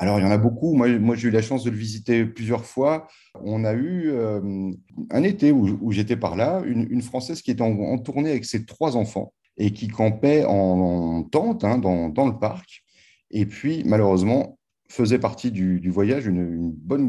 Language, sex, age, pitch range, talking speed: French, male, 30-49, 90-115 Hz, 215 wpm